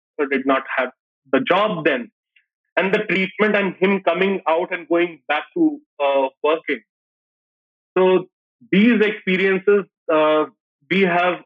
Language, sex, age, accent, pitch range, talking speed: English, male, 30-49, Indian, 150-185 Hz, 130 wpm